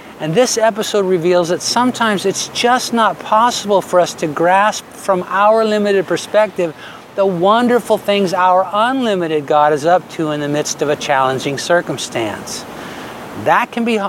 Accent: American